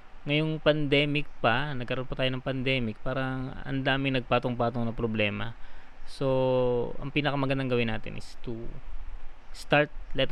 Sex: male